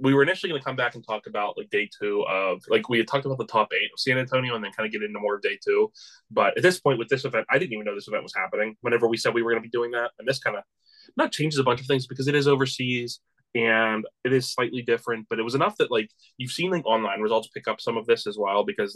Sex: male